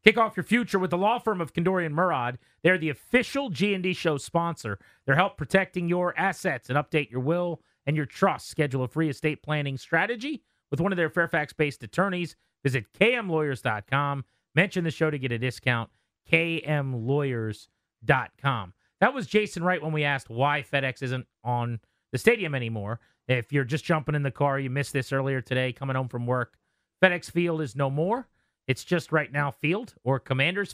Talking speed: 185 wpm